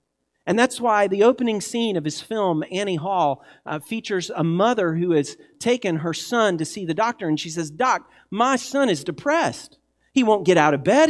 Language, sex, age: English, male, 40-59